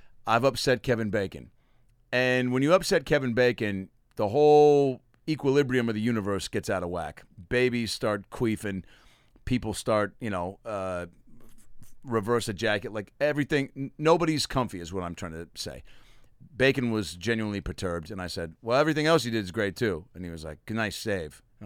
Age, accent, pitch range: 40-59, American, 95-125 Hz